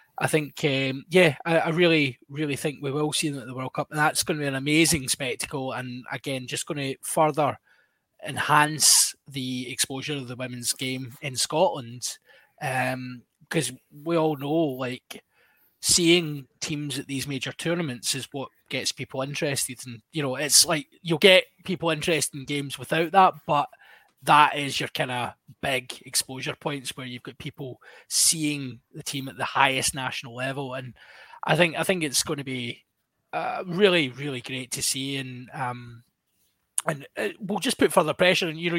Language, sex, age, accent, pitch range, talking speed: English, male, 20-39, British, 130-165 Hz, 185 wpm